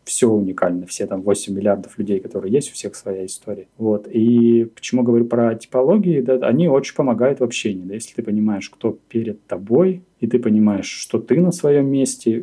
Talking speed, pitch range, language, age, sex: 195 wpm, 100-120 Hz, Russian, 20-39, male